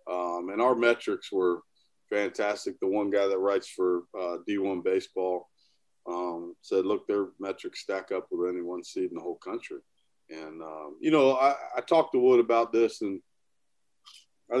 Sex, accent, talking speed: male, American, 175 wpm